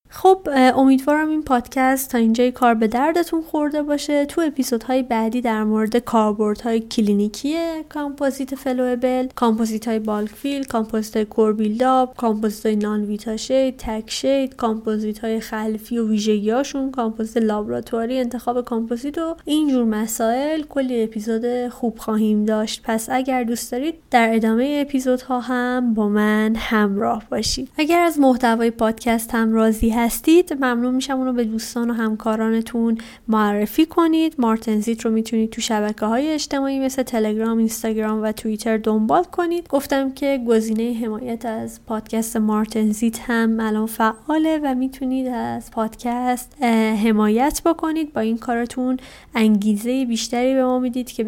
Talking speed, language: 140 wpm, Persian